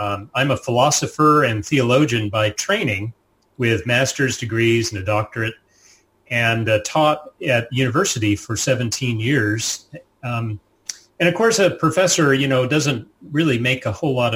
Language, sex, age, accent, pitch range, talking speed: English, male, 30-49, American, 110-135 Hz, 150 wpm